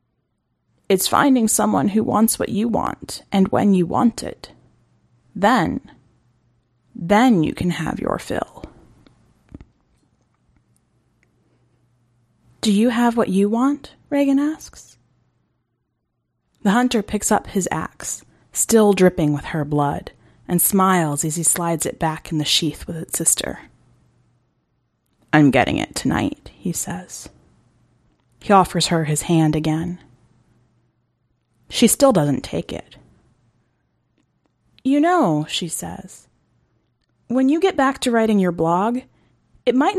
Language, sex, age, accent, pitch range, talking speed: English, female, 30-49, American, 155-225 Hz, 125 wpm